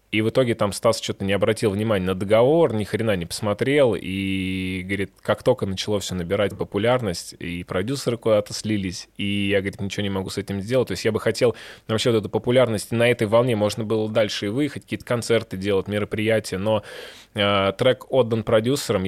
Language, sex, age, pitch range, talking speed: Russian, male, 20-39, 100-120 Hz, 195 wpm